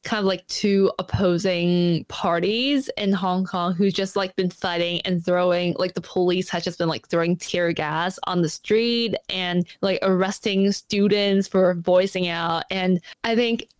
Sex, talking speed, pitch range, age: female, 170 wpm, 180-230 Hz, 10-29